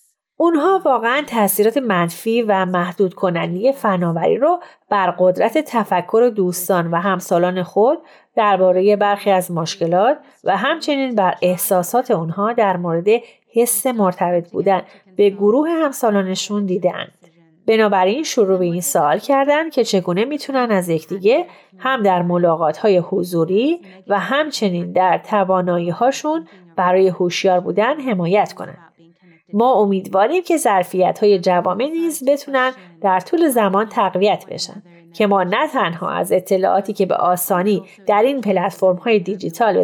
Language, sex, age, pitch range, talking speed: Persian, female, 30-49, 180-225 Hz, 130 wpm